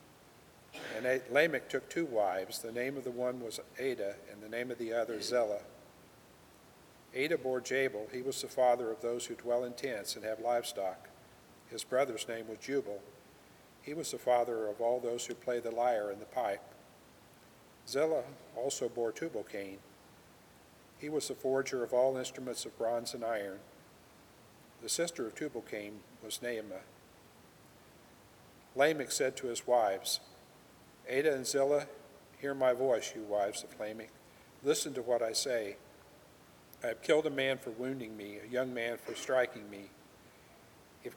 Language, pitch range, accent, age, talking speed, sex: English, 110-130 Hz, American, 50-69, 160 wpm, male